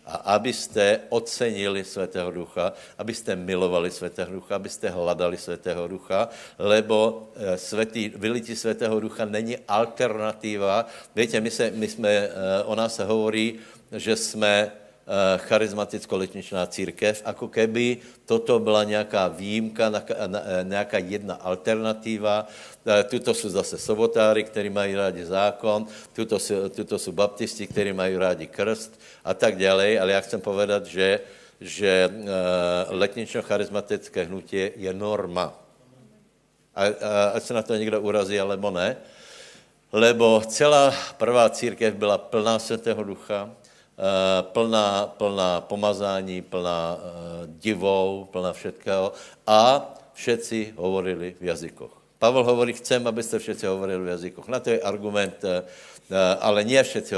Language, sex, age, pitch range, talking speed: Slovak, male, 60-79, 95-110 Hz, 120 wpm